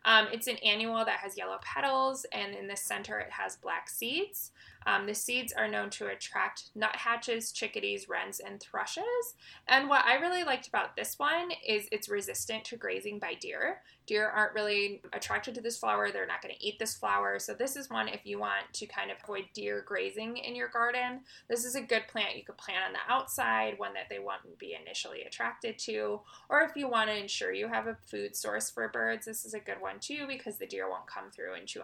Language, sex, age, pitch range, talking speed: English, female, 20-39, 200-255 Hz, 225 wpm